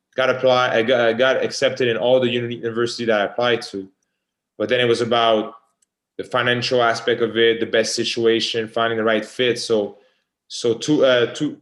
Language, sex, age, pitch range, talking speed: English, male, 20-39, 110-130 Hz, 190 wpm